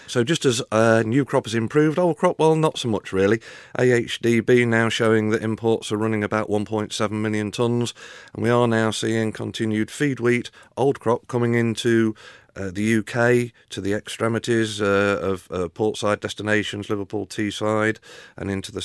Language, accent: English, British